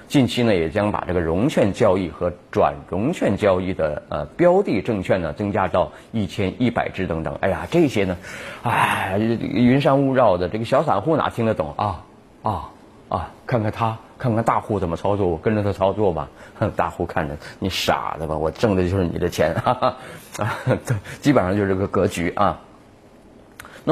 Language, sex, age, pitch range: Chinese, male, 30-49, 95-120 Hz